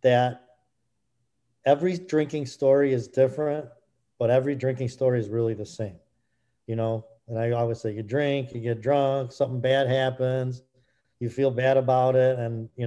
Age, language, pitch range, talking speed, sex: 40-59, English, 120-145 Hz, 165 wpm, male